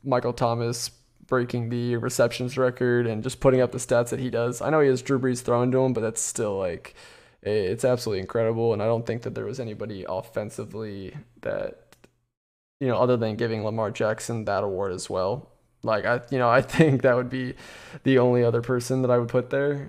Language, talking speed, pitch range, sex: English, 210 wpm, 115-130 Hz, male